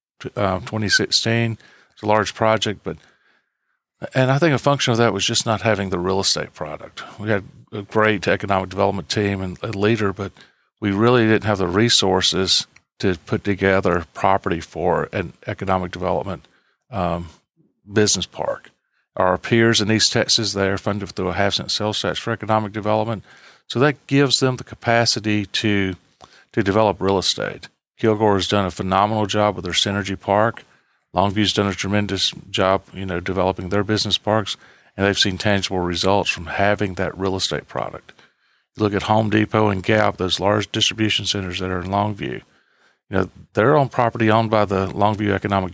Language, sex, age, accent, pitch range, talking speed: English, male, 40-59, American, 95-110 Hz, 175 wpm